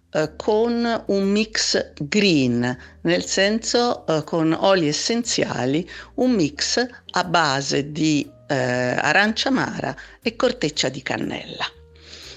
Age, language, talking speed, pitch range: 50-69, Italian, 95 wpm, 140-195 Hz